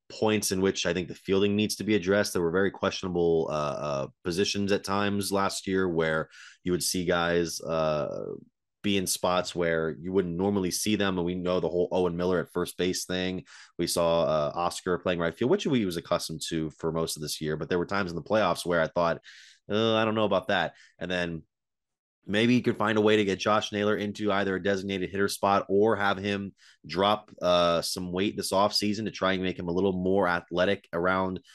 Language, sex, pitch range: English, male, 85-100 Hz